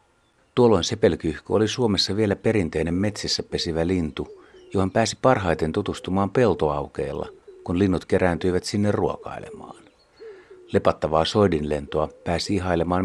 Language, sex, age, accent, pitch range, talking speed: Finnish, male, 60-79, native, 90-145 Hz, 105 wpm